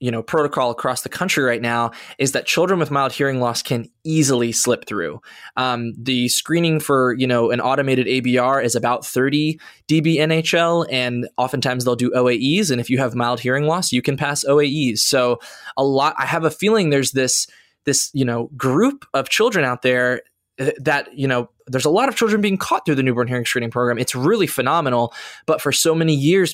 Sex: male